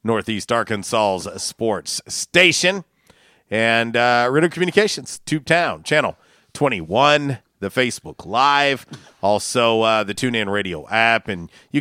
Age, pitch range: 40-59, 100-125 Hz